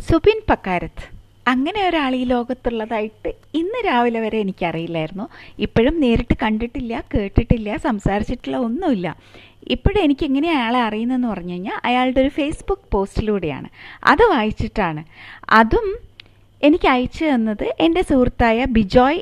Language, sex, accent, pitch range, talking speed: Malayalam, female, native, 200-260 Hz, 105 wpm